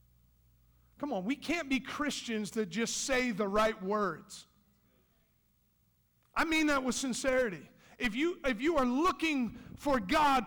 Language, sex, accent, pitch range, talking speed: English, male, American, 220-310 Hz, 145 wpm